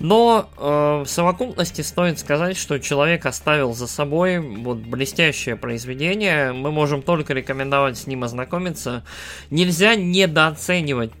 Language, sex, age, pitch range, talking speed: Russian, male, 20-39, 125-165 Hz, 125 wpm